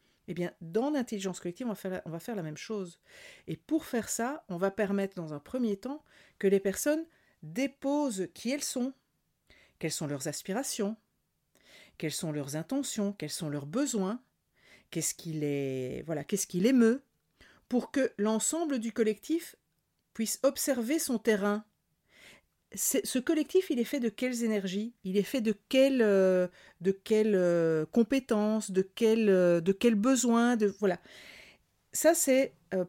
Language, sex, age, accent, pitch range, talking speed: French, female, 50-69, French, 180-255 Hz, 150 wpm